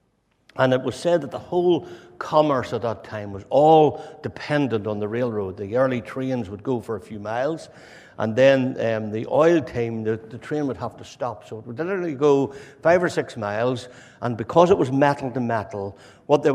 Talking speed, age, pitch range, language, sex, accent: 205 wpm, 60-79, 110-135 Hz, English, male, Irish